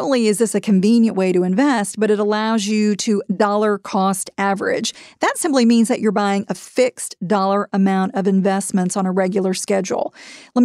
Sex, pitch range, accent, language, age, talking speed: female, 200-235 Hz, American, English, 40-59, 185 wpm